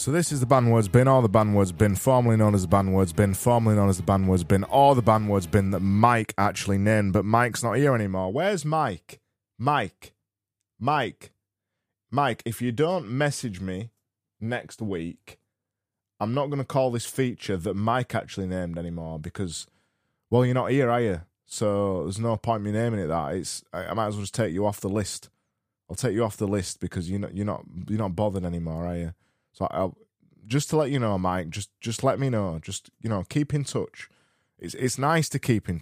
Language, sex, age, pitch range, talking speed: English, male, 20-39, 95-120 Hz, 220 wpm